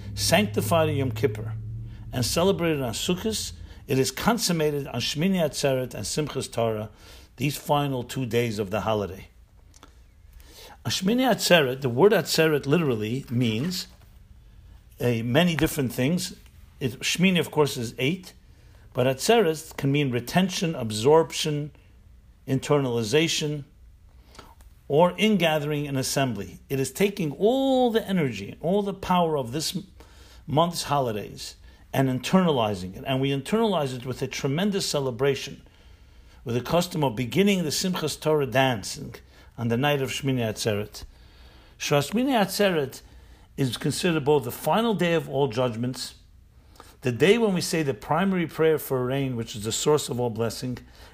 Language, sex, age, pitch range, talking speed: English, male, 60-79, 115-160 Hz, 135 wpm